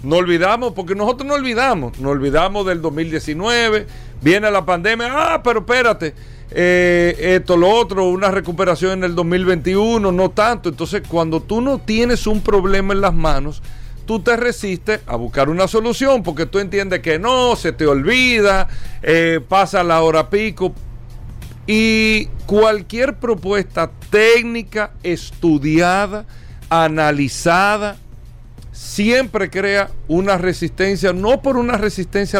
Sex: male